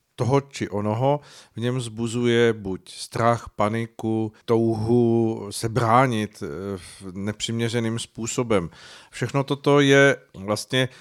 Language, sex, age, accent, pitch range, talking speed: Czech, male, 40-59, native, 105-120 Hz, 100 wpm